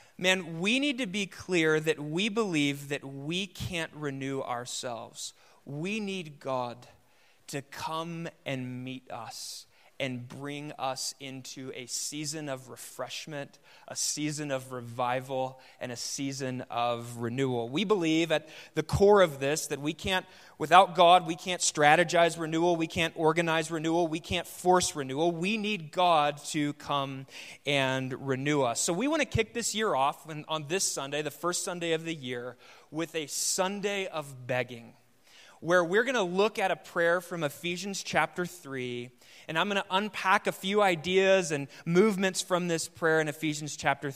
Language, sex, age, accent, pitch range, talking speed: English, male, 30-49, American, 135-175 Hz, 165 wpm